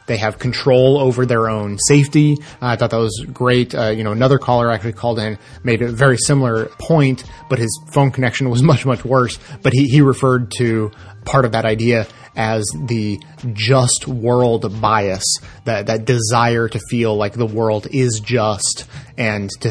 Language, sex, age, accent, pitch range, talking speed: English, male, 30-49, American, 110-135 Hz, 185 wpm